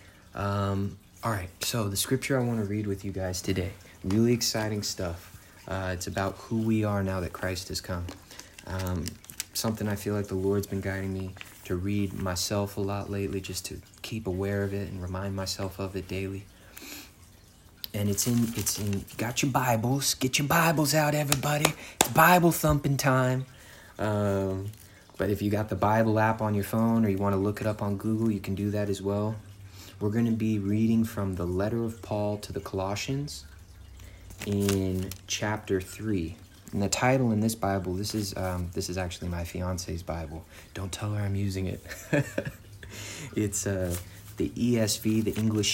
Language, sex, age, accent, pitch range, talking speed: English, male, 30-49, American, 95-110 Hz, 185 wpm